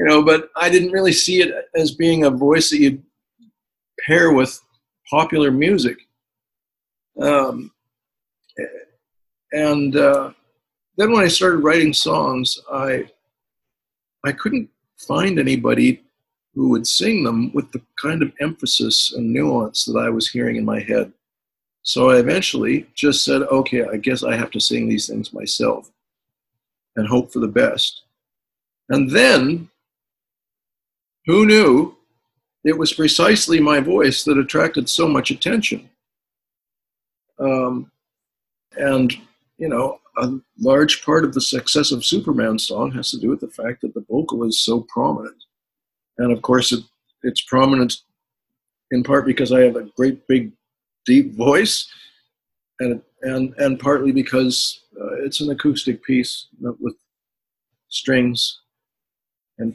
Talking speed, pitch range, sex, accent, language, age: 140 wpm, 125-155 Hz, male, American, English, 50-69